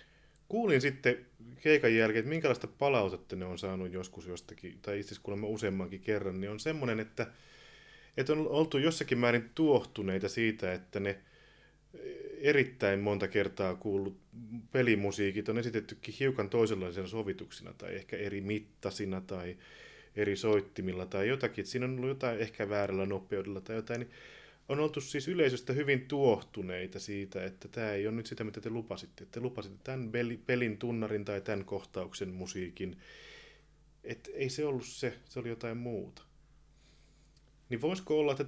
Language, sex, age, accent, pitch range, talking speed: Finnish, male, 30-49, native, 100-125 Hz, 150 wpm